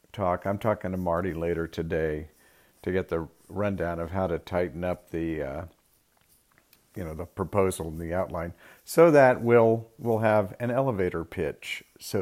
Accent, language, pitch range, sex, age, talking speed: American, English, 90-120 Hz, male, 50-69, 165 wpm